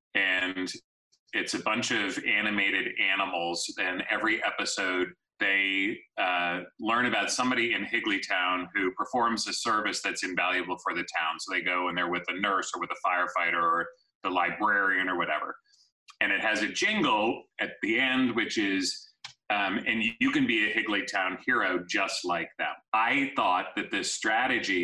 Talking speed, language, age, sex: 165 wpm, English, 30-49, male